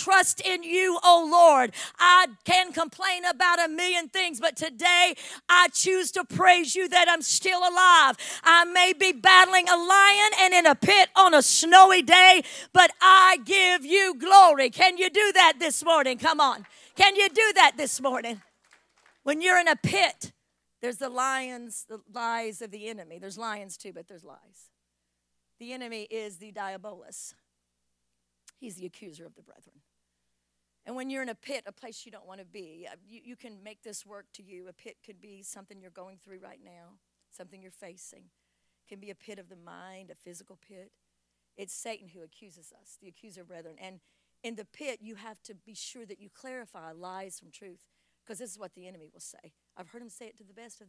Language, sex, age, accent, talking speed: English, female, 50-69, American, 200 wpm